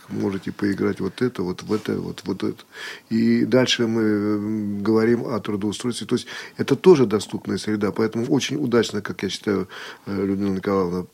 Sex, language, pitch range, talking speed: male, Russian, 100-120 Hz, 160 wpm